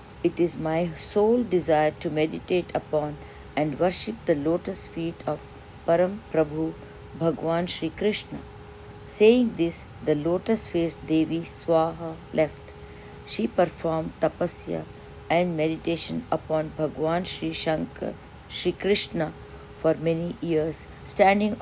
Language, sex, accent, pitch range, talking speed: English, female, Indian, 160-195 Hz, 115 wpm